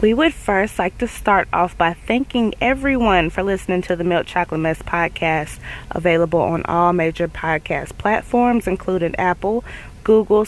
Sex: female